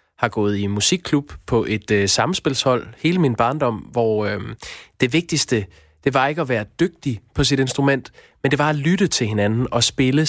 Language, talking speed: Danish, 190 wpm